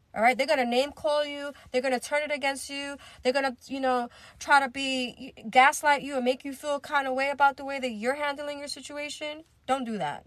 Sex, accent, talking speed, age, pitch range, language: female, American, 250 wpm, 20-39, 230-285 Hz, English